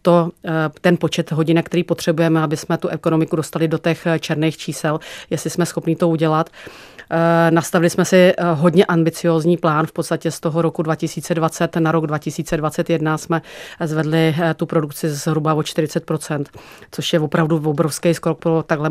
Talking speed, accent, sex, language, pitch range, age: 150 wpm, native, female, Czech, 160-170 Hz, 30-49